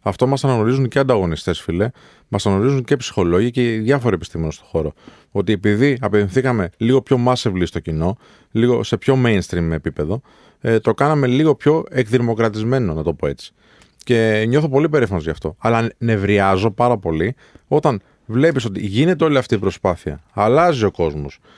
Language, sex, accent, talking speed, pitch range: Greek, male, native, 160 wpm, 90-130 Hz